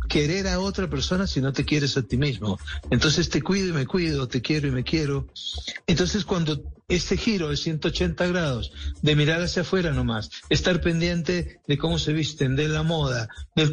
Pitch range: 130-170 Hz